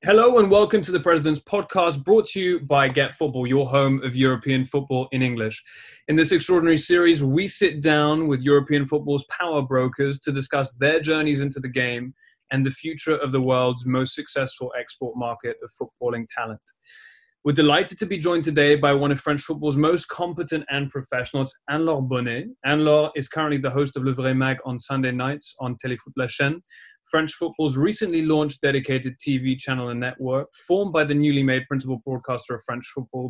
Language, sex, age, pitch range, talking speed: English, male, 20-39, 130-160 Hz, 185 wpm